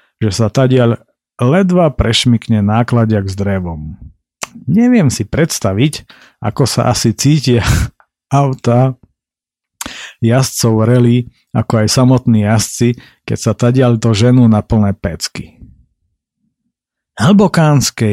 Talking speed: 105 wpm